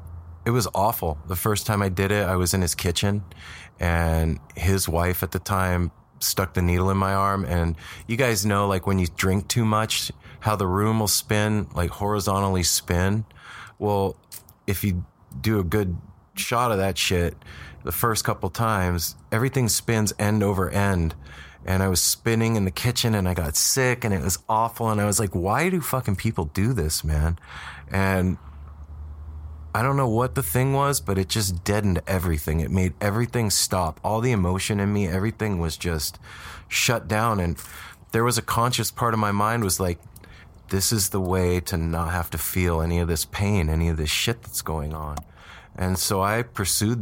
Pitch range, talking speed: 85-105 Hz, 195 wpm